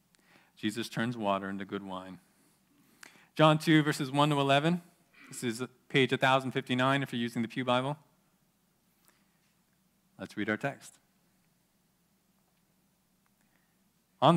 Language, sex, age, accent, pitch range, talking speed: English, male, 40-59, American, 120-185 Hz, 115 wpm